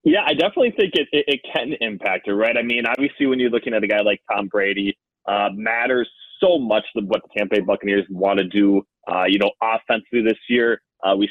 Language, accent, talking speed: English, American, 235 wpm